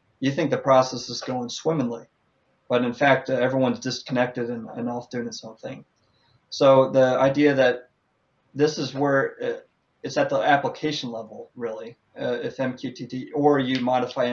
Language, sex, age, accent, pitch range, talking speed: English, male, 30-49, American, 120-135 Hz, 170 wpm